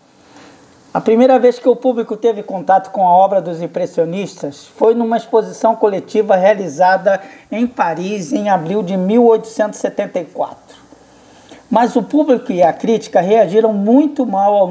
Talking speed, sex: 140 wpm, male